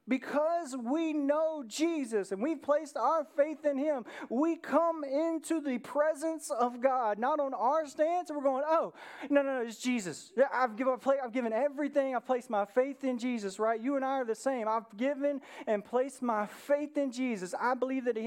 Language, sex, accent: English, male, American